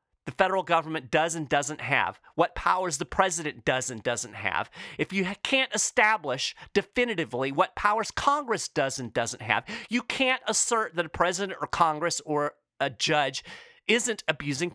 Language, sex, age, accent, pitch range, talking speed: English, male, 40-59, American, 165-240 Hz, 165 wpm